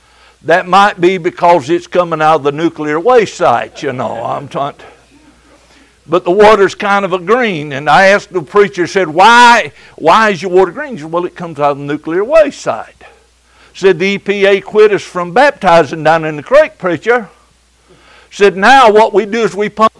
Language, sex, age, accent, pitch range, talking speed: English, male, 60-79, American, 160-210 Hz, 200 wpm